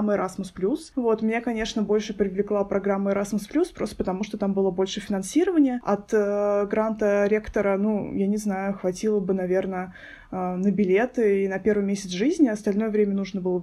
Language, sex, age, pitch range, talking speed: Russian, female, 20-39, 200-230 Hz, 165 wpm